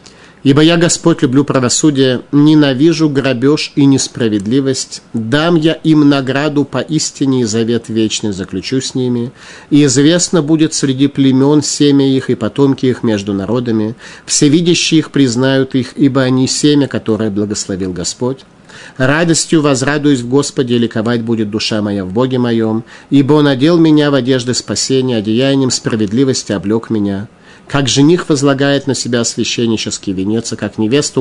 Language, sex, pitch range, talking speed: Russian, male, 110-145 Hz, 150 wpm